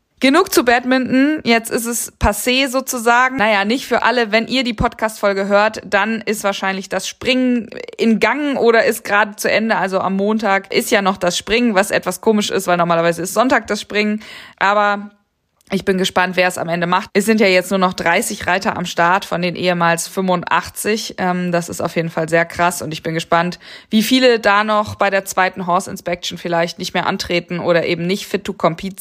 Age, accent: 20-39, German